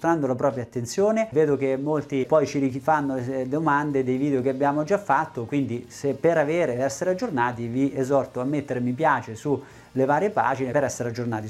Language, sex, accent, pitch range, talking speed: Italian, male, native, 130-195 Hz, 175 wpm